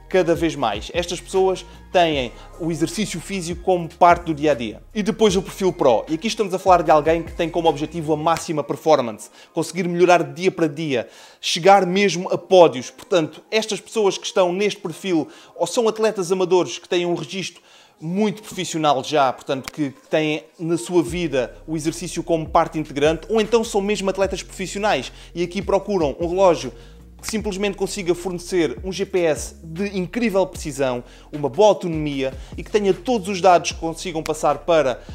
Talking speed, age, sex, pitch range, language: 175 wpm, 20-39, male, 155-190 Hz, Portuguese